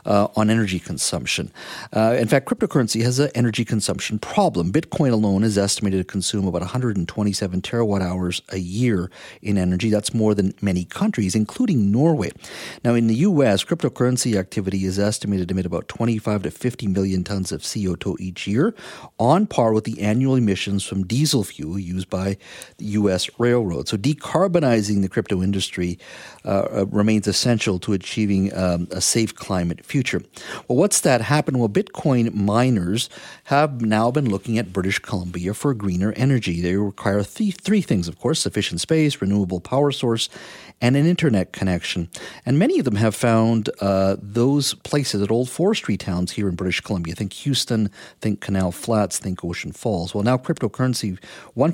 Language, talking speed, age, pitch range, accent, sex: English, 170 wpm, 50-69, 95-125 Hz, American, male